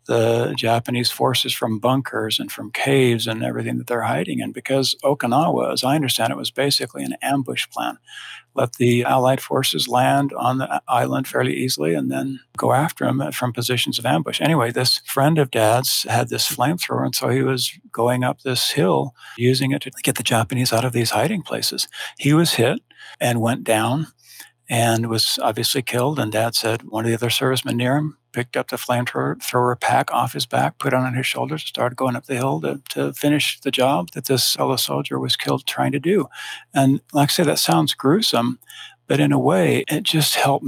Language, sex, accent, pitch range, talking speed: English, male, American, 115-135 Hz, 200 wpm